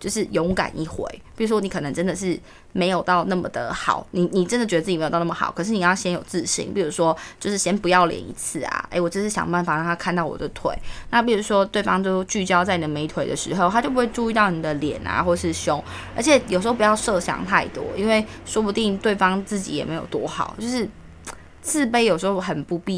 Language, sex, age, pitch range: Chinese, female, 20-39, 175-220 Hz